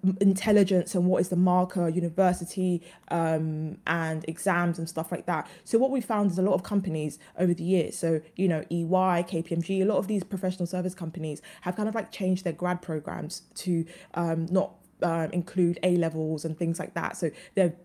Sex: female